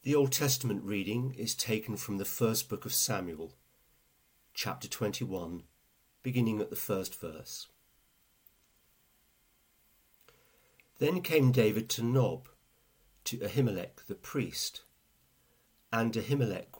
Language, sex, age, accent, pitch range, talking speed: English, male, 50-69, British, 100-130 Hz, 105 wpm